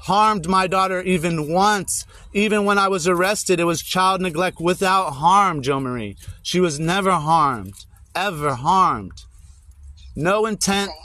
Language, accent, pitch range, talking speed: English, American, 160-205 Hz, 140 wpm